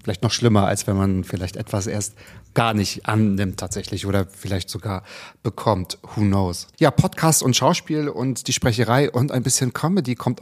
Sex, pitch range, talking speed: male, 105-130 Hz, 180 wpm